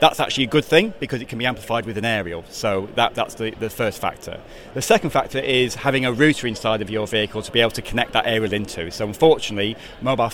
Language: English